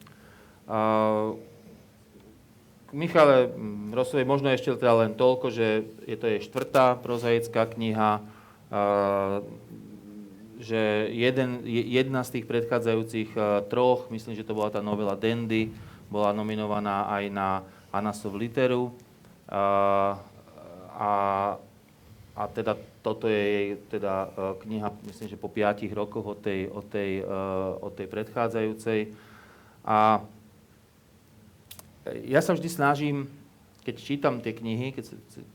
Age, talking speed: 30-49, 115 wpm